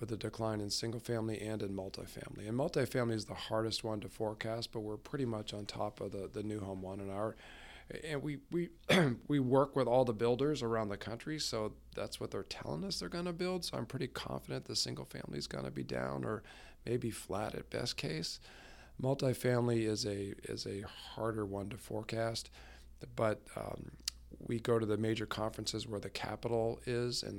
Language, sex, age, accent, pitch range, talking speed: English, male, 40-59, American, 100-120 Hz, 200 wpm